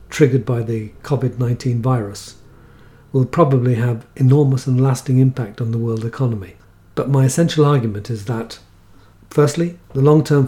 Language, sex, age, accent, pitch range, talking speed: English, male, 50-69, British, 110-135 Hz, 145 wpm